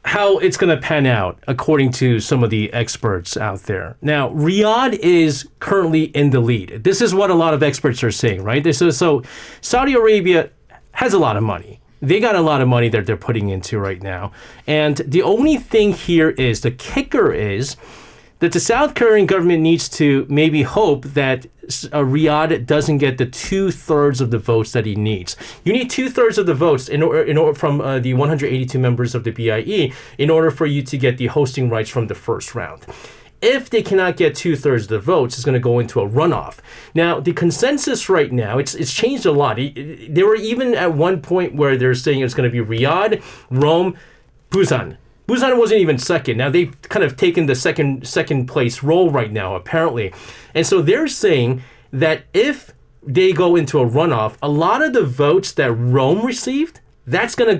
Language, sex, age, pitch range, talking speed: English, male, 40-59, 125-175 Hz, 205 wpm